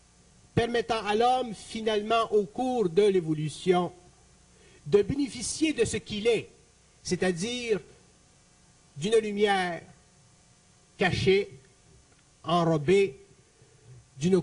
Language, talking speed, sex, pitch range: French, 85 wpm, male, 150-220 Hz